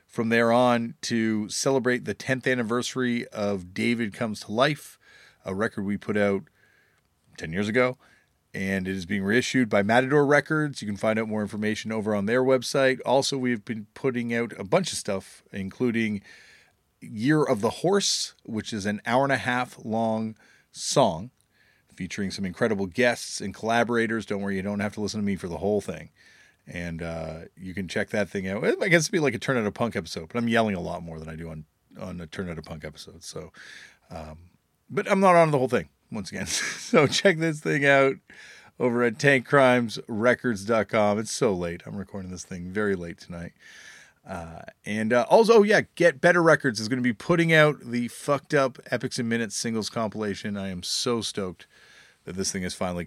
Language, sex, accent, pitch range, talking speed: English, male, American, 95-125 Hz, 200 wpm